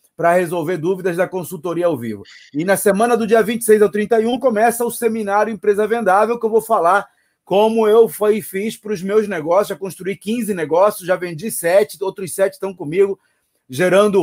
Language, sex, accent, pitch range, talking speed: Portuguese, male, Brazilian, 160-210 Hz, 190 wpm